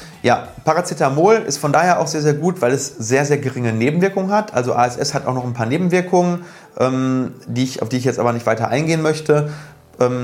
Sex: male